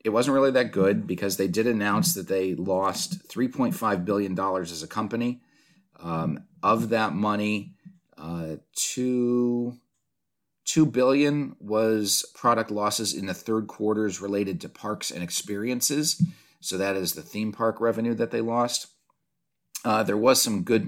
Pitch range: 95-120 Hz